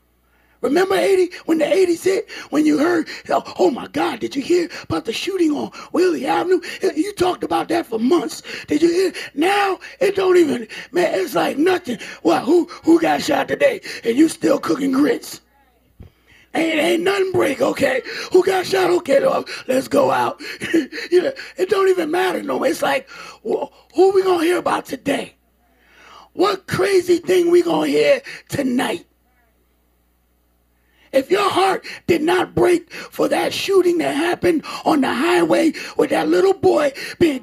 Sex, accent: male, American